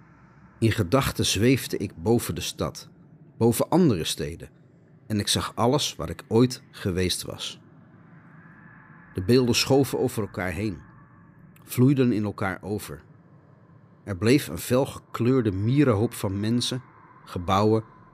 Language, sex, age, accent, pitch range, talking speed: Dutch, male, 40-59, Dutch, 100-150 Hz, 120 wpm